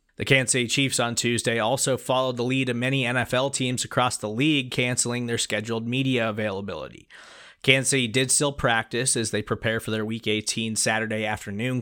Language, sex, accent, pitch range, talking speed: English, male, American, 105-125 Hz, 185 wpm